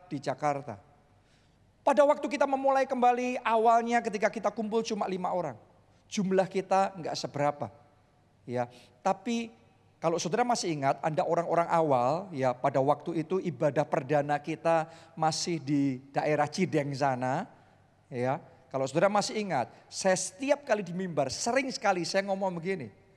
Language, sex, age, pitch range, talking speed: Indonesian, male, 40-59, 145-210 Hz, 135 wpm